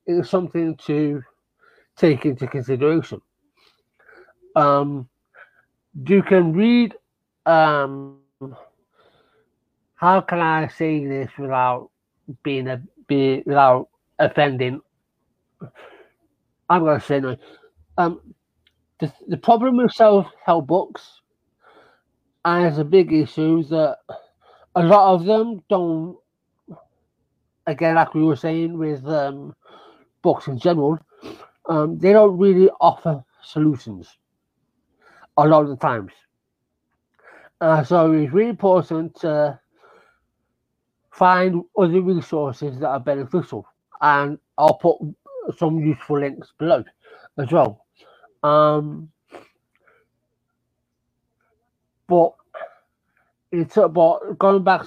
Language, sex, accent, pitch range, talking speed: English, male, British, 145-185 Hz, 100 wpm